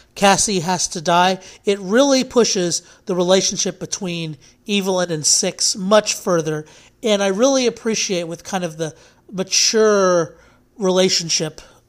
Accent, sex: American, male